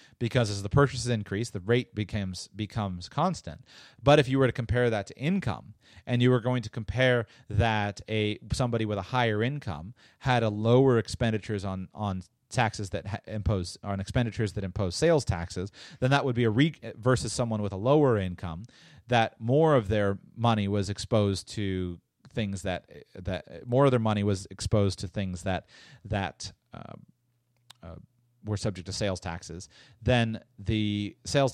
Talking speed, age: 175 wpm, 30-49